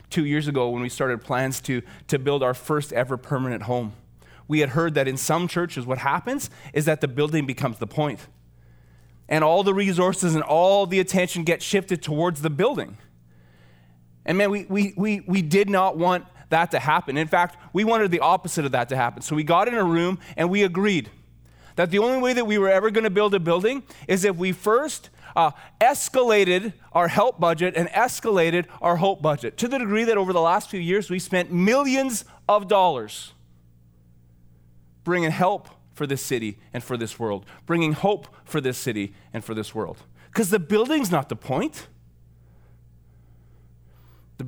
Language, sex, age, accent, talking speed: English, male, 20-39, American, 190 wpm